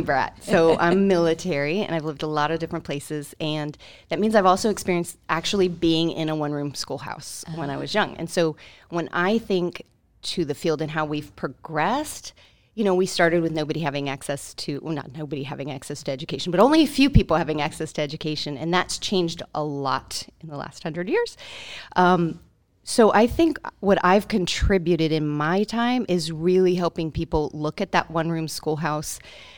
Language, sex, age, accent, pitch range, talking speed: English, female, 30-49, American, 155-200 Hz, 190 wpm